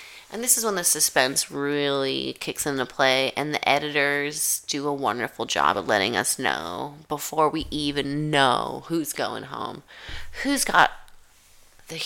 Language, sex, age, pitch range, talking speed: English, female, 30-49, 150-200 Hz, 155 wpm